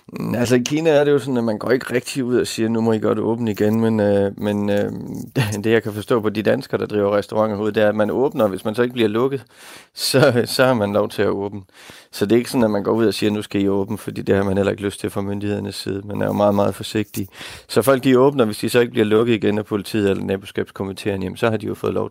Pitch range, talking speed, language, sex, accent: 105-115 Hz, 300 wpm, Danish, male, native